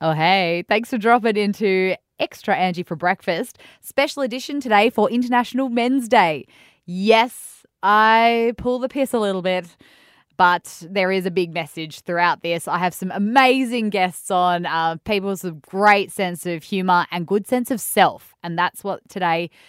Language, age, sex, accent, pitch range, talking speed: English, 10-29, female, Australian, 180-245 Hz, 170 wpm